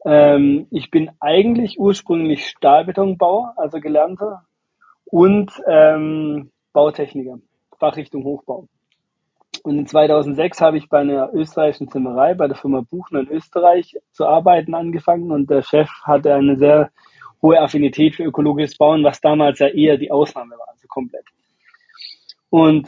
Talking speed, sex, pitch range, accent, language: 135 wpm, male, 140-175 Hz, German, German